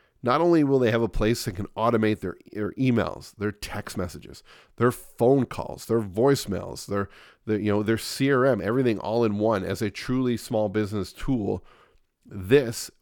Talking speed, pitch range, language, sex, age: 175 wpm, 100-130 Hz, English, male, 40-59